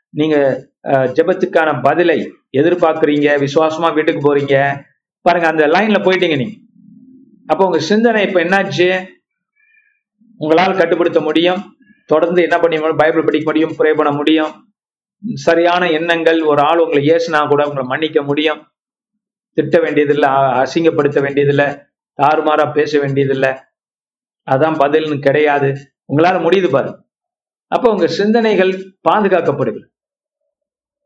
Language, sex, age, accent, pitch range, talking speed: Tamil, male, 50-69, native, 150-205 Hz, 110 wpm